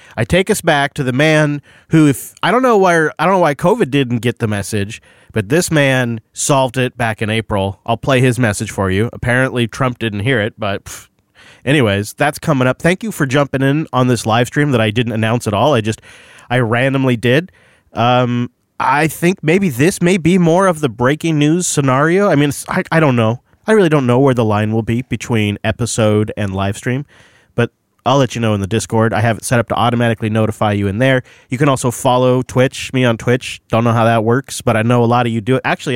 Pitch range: 110-145 Hz